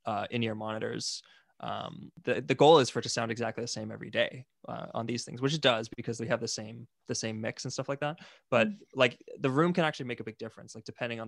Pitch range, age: 110-130 Hz, 20-39